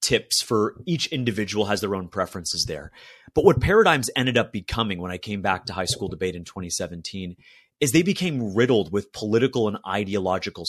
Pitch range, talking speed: 100-125 Hz, 185 wpm